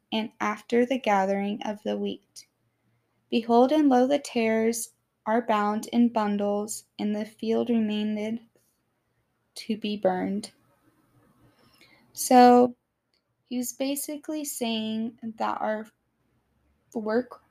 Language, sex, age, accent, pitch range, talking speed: English, female, 10-29, American, 210-240 Hz, 105 wpm